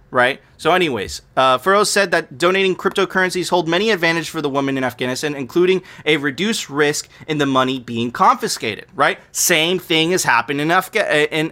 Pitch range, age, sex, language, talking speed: 145-185 Hz, 20-39, male, English, 170 wpm